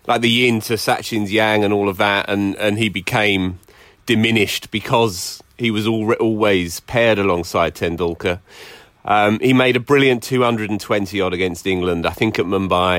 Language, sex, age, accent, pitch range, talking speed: English, male, 30-49, British, 95-115 Hz, 160 wpm